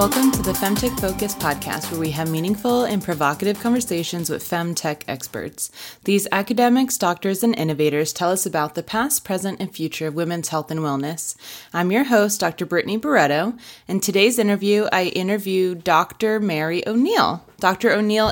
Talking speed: 165 wpm